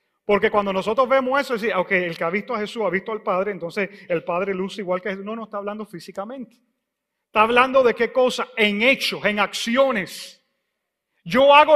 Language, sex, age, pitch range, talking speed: English, male, 40-59, 195-270 Hz, 200 wpm